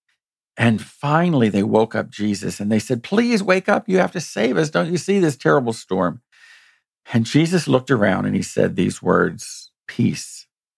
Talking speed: 185 wpm